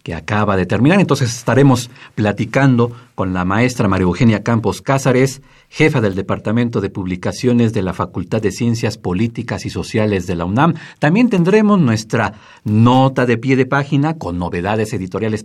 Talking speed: 160 wpm